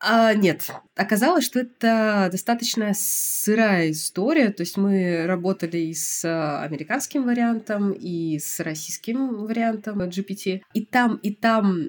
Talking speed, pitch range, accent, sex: 125 wpm, 180-225 Hz, native, female